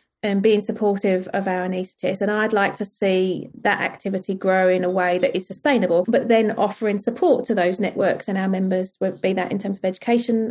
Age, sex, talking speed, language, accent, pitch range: 30-49, female, 210 wpm, English, British, 195-235 Hz